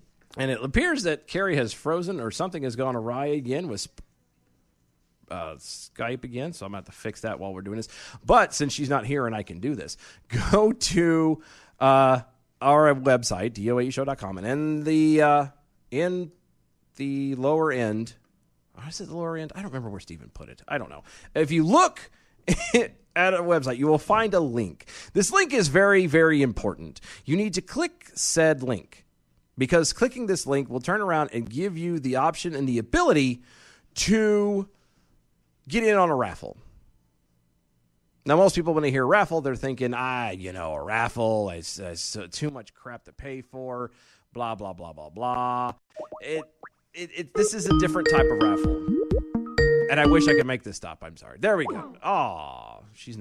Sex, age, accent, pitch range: male, 30-49, American, 100-160 Hz